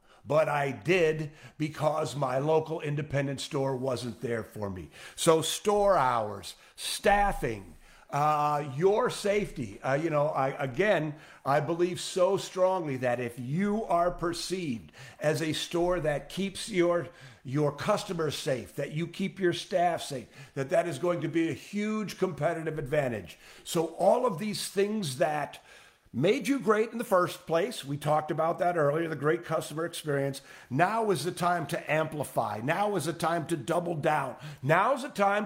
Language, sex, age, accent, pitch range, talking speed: English, male, 50-69, American, 150-190 Hz, 165 wpm